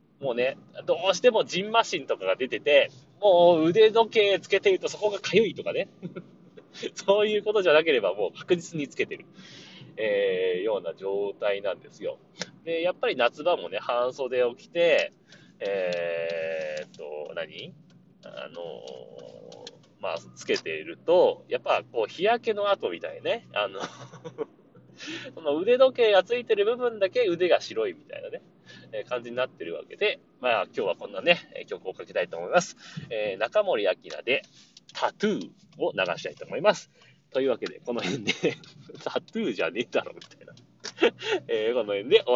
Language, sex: Japanese, male